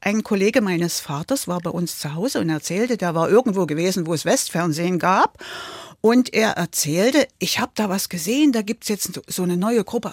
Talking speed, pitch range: 205 wpm, 175-235 Hz